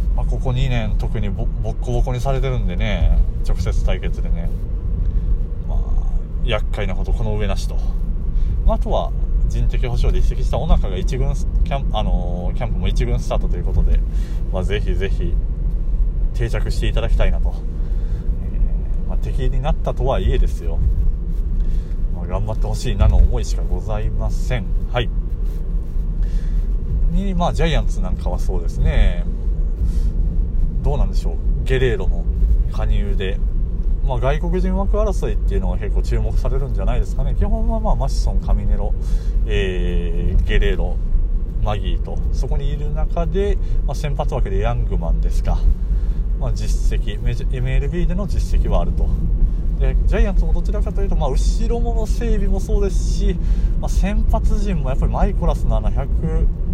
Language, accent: Japanese, native